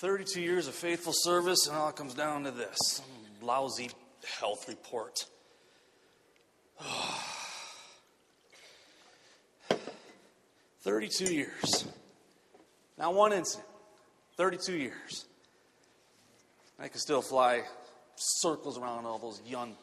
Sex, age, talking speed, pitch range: male, 30-49, 95 wpm, 120-205 Hz